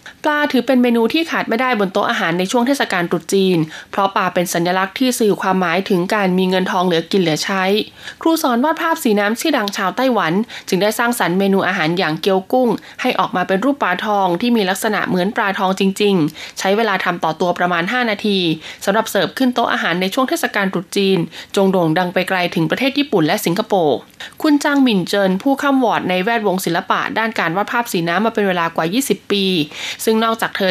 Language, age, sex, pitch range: Thai, 20-39, female, 180-235 Hz